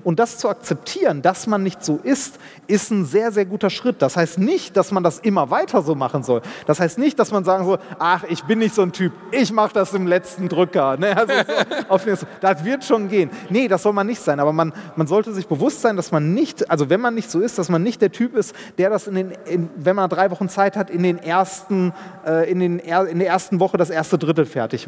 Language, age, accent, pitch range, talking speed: German, 30-49, German, 180-230 Hz, 255 wpm